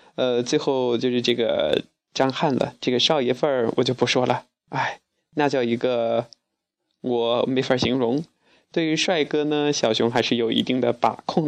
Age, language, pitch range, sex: 20-39, Chinese, 125-150 Hz, male